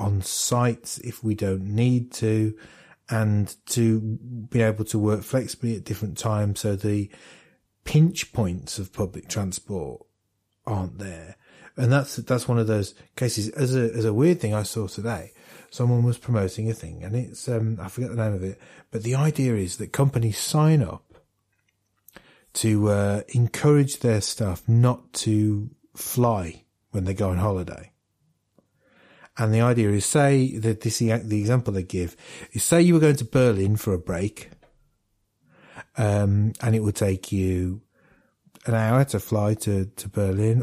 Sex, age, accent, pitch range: male, 30-49, British, 100-120 Hz